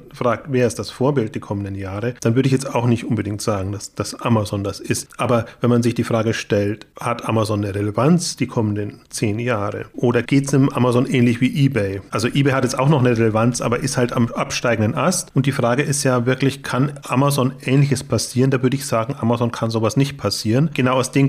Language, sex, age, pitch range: German, male, 30-49, 115-140 Hz